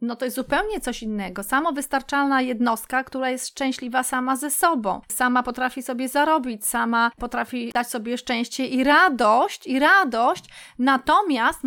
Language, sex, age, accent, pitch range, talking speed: Polish, female, 30-49, native, 245-300 Hz, 145 wpm